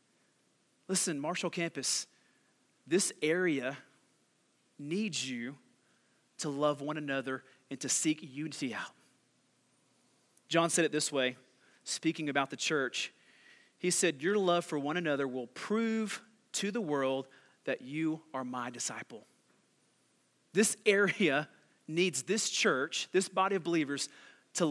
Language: English